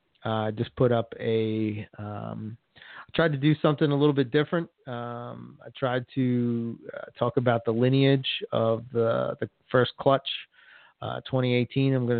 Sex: male